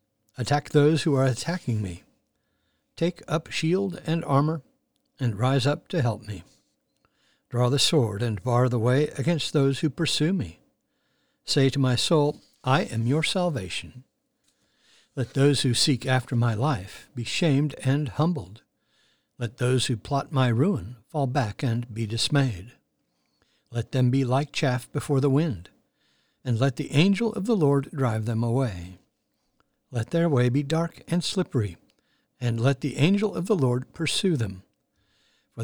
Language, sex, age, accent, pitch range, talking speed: English, male, 60-79, American, 120-150 Hz, 160 wpm